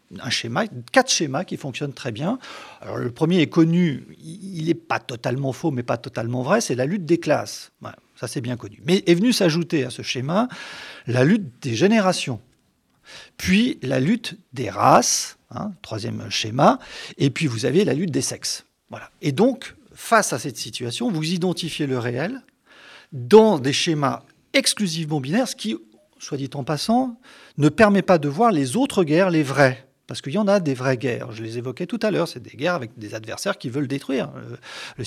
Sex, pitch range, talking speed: male, 125-185 Hz, 195 wpm